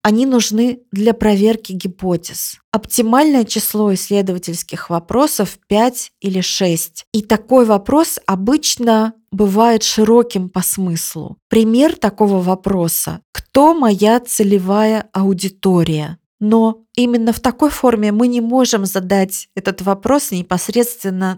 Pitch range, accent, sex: 190-235 Hz, native, female